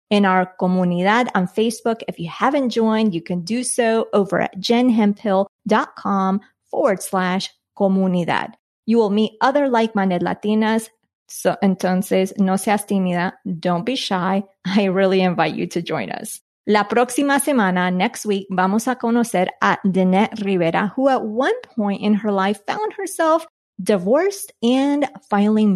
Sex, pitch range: female, 190-230 Hz